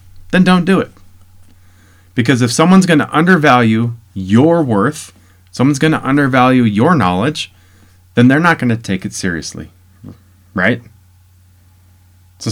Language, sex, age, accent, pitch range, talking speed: English, male, 30-49, American, 90-120 Hz, 135 wpm